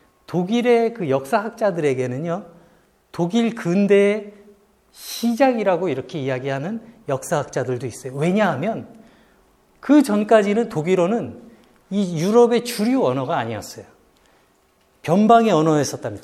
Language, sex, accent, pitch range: Korean, male, native, 160-225 Hz